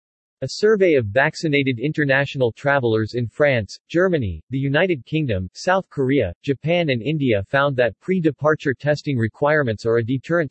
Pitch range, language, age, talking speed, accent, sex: 120-155 Hz, English, 40-59, 145 wpm, American, male